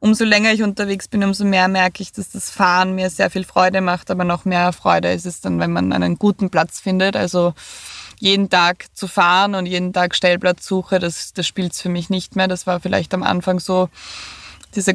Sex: female